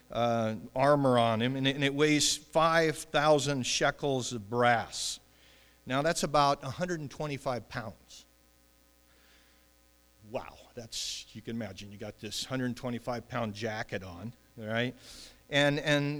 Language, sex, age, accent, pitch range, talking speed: English, male, 50-69, American, 120-150 Hz, 115 wpm